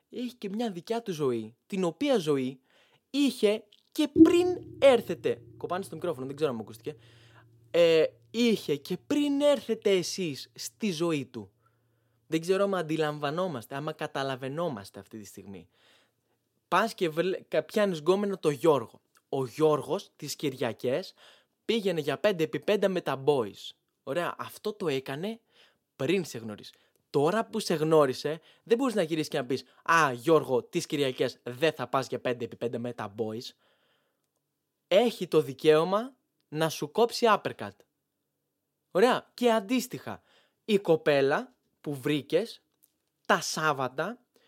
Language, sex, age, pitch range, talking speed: Greek, male, 20-39, 135-220 Hz, 135 wpm